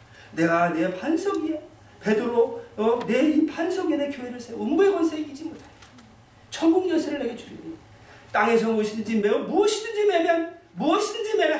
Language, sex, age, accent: Korean, male, 40-59, native